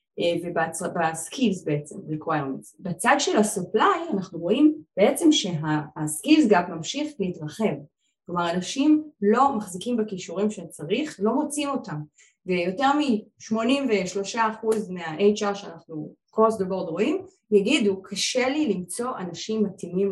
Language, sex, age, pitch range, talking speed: Hebrew, female, 20-39, 175-240 Hz, 115 wpm